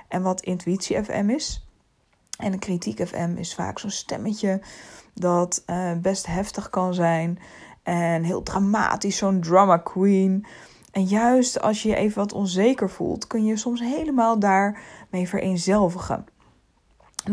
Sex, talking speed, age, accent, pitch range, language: female, 140 wpm, 20-39, Dutch, 175-220 Hz, Dutch